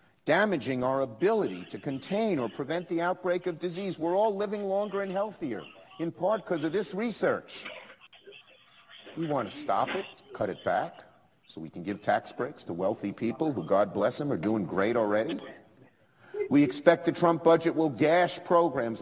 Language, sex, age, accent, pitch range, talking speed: English, male, 50-69, American, 110-175 Hz, 175 wpm